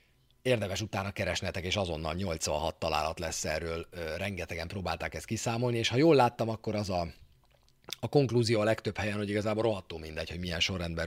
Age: 30-49